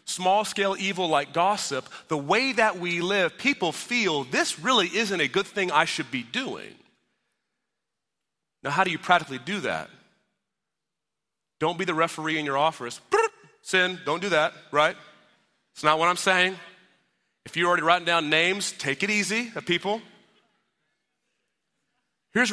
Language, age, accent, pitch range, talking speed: English, 30-49, American, 140-190 Hz, 150 wpm